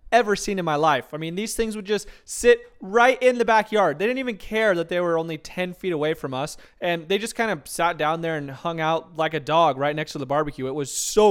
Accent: American